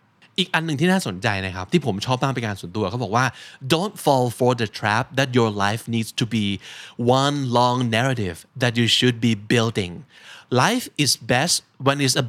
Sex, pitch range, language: male, 110-145 Hz, Thai